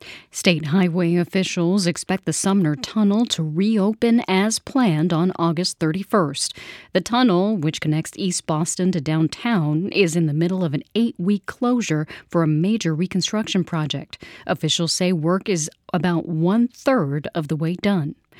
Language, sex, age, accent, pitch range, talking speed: English, female, 40-59, American, 160-205 Hz, 145 wpm